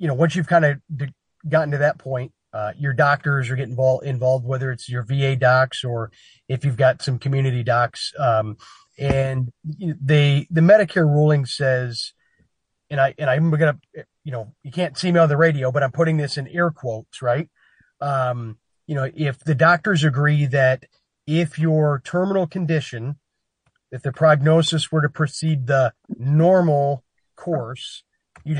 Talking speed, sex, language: 170 wpm, male, English